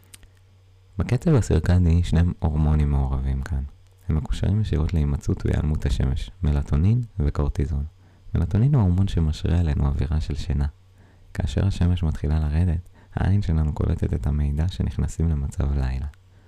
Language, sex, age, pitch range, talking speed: Hebrew, male, 20-39, 80-95 Hz, 125 wpm